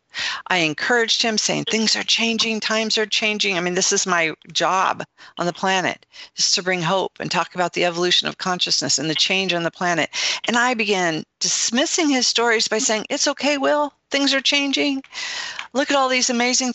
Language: English